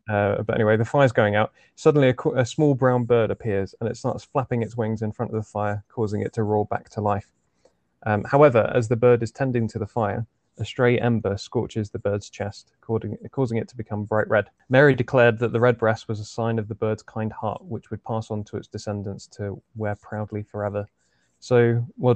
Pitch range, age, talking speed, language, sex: 105-120 Hz, 20-39, 225 wpm, English, male